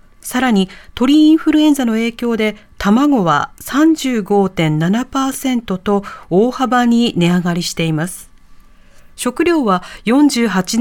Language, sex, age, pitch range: Japanese, female, 40-59, 180-260 Hz